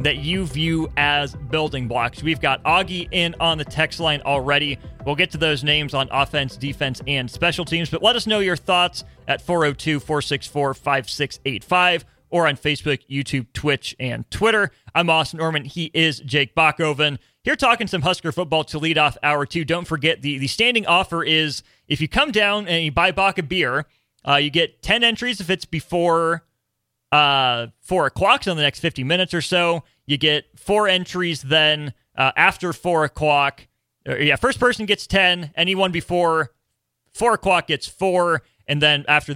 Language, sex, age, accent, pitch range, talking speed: English, male, 30-49, American, 140-175 Hz, 180 wpm